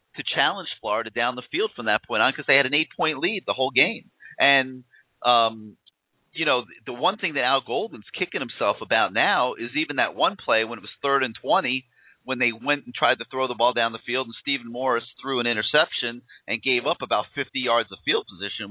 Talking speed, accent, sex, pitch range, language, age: 230 wpm, American, male, 115-140 Hz, English, 40-59